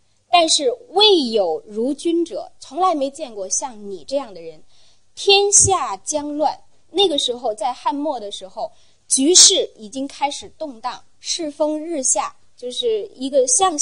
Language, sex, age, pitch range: Chinese, female, 20-39, 245-350 Hz